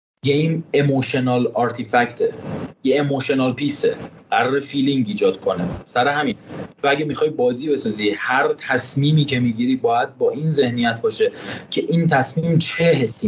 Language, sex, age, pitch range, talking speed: English, male, 30-49, 125-170 Hz, 145 wpm